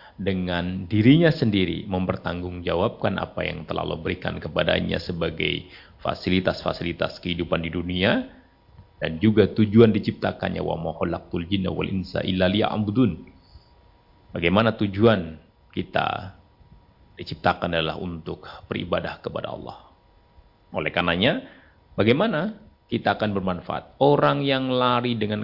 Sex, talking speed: male, 90 wpm